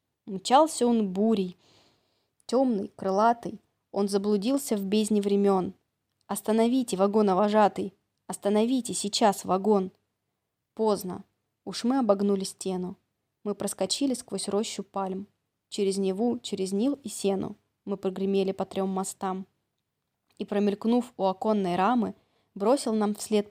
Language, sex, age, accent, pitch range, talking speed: Russian, female, 20-39, native, 190-215 Hz, 115 wpm